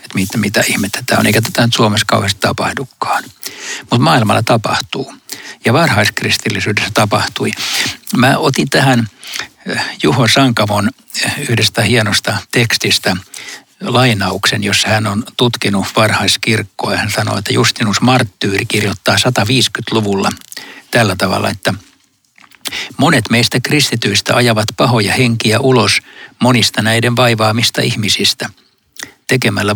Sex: male